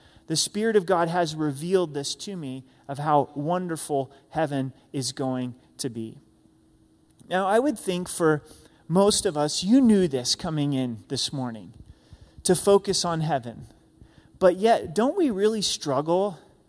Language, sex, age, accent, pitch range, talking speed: English, male, 30-49, American, 150-205 Hz, 150 wpm